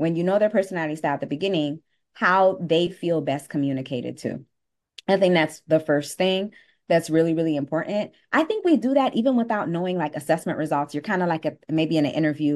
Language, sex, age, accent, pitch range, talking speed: English, female, 20-39, American, 145-185 Hz, 215 wpm